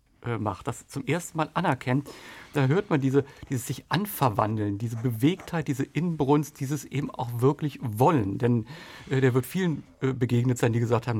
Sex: male